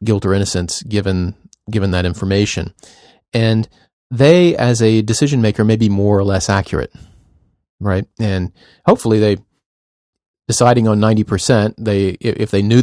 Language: English